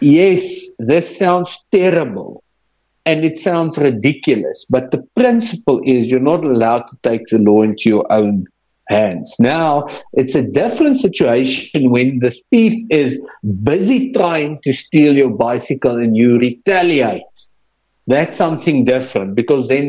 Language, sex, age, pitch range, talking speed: English, male, 50-69, 120-175 Hz, 140 wpm